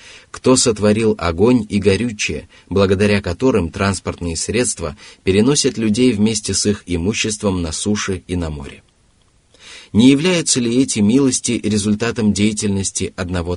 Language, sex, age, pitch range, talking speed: Russian, male, 30-49, 90-115 Hz, 125 wpm